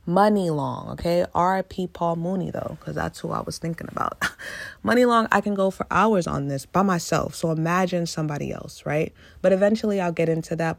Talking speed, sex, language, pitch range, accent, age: 200 wpm, female, English, 155-195 Hz, American, 20-39